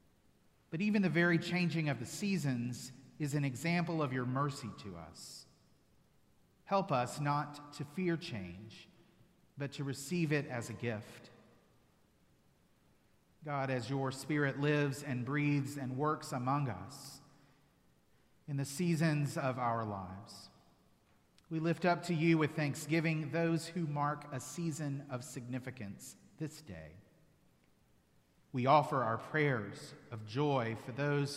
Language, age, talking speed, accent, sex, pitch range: English, 40-59, 135 wpm, American, male, 120-155 Hz